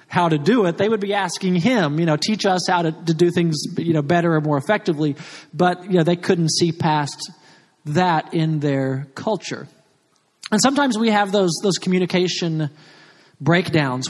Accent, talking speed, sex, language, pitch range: American, 185 wpm, male, English, 155-195 Hz